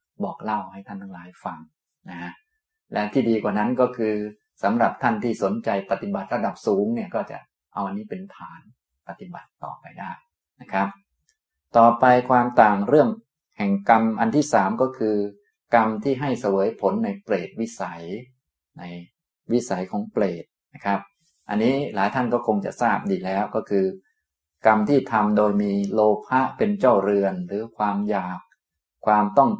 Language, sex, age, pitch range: Thai, male, 20-39, 100-130 Hz